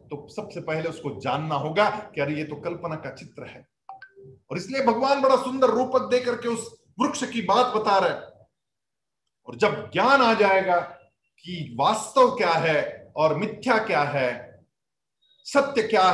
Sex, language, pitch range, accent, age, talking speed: male, Hindi, 155-235 Hz, native, 50-69, 165 wpm